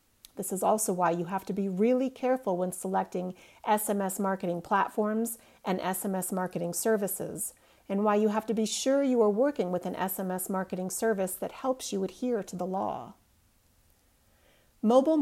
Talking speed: 165 wpm